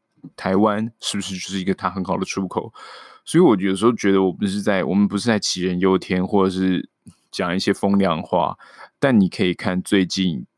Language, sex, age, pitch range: Chinese, male, 20-39, 95-110 Hz